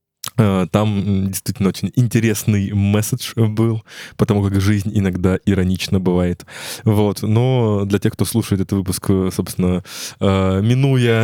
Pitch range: 95-115 Hz